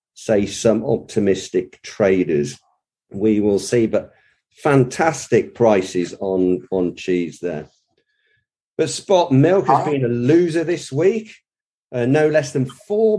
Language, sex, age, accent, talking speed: English, male, 50-69, British, 125 wpm